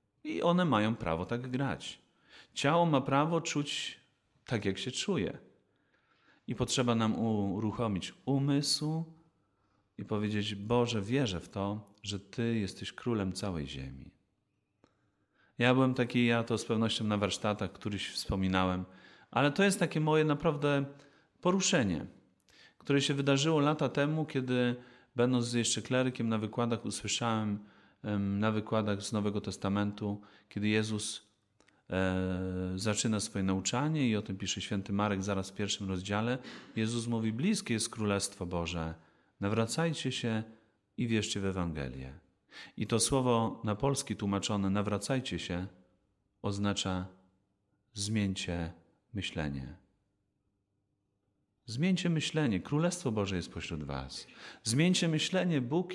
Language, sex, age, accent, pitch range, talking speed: Polish, male, 30-49, native, 100-130 Hz, 125 wpm